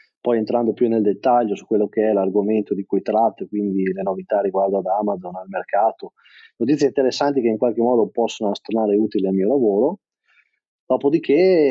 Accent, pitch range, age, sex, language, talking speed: native, 100-130 Hz, 30-49, male, Italian, 175 wpm